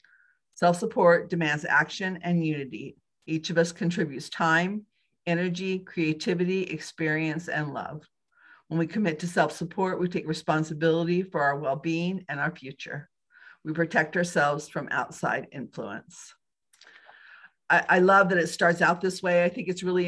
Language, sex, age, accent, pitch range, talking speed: English, female, 50-69, American, 155-175 Hz, 150 wpm